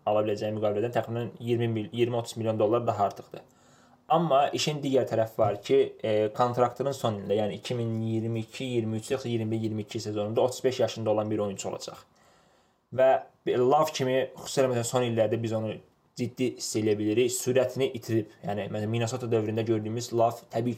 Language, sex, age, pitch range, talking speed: English, male, 20-39, 110-130 Hz, 145 wpm